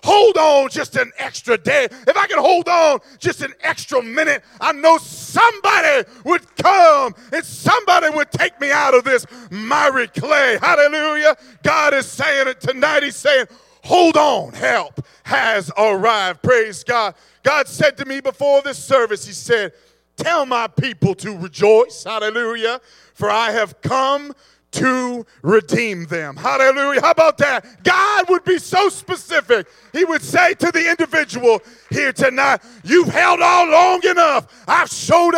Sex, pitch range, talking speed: male, 205-310 Hz, 155 wpm